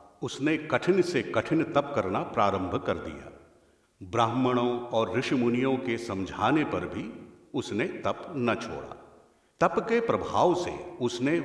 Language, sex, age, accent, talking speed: Hindi, male, 50-69, native, 130 wpm